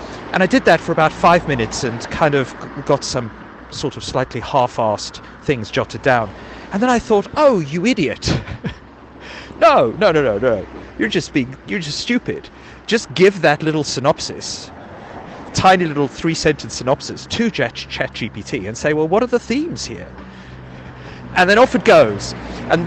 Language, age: English, 40-59